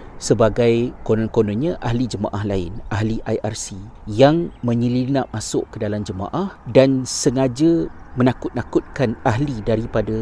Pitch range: 105-130 Hz